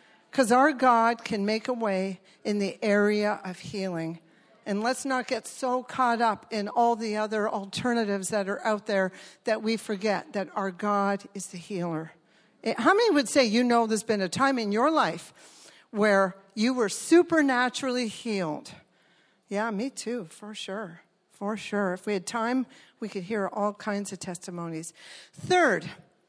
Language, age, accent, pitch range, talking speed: English, 50-69, American, 195-245 Hz, 170 wpm